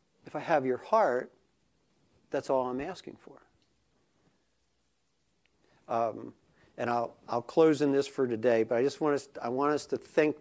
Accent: American